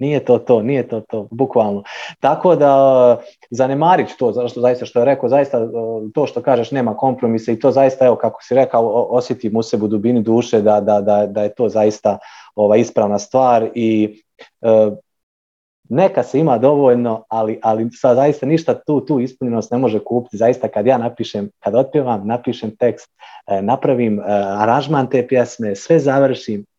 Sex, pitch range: male, 110-130 Hz